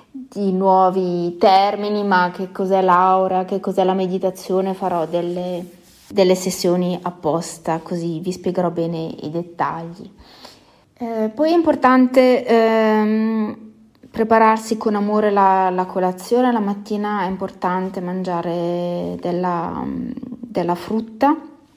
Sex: female